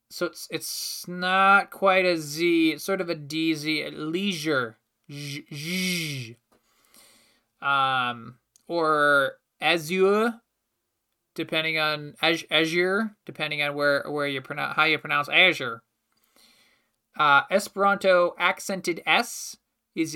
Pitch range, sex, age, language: 140-190 Hz, male, 20-39, English